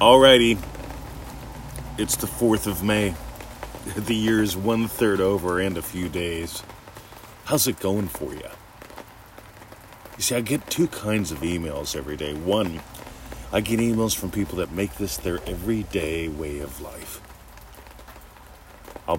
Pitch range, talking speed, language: 85-110 Hz, 140 wpm, English